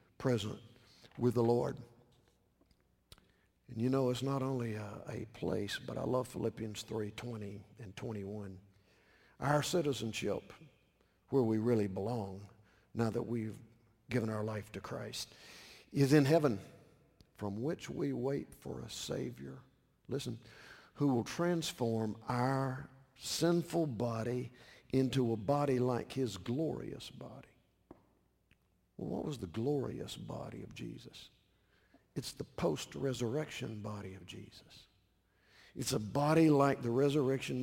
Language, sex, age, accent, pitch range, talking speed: English, male, 50-69, American, 110-135 Hz, 125 wpm